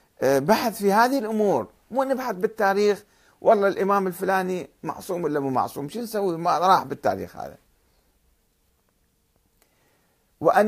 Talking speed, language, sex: 120 wpm, Arabic, male